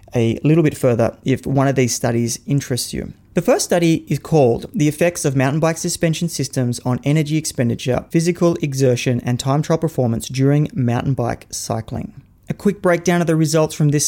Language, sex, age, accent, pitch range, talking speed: English, male, 30-49, Australian, 130-160 Hz, 190 wpm